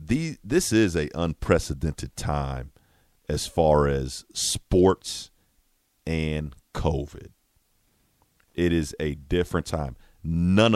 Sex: male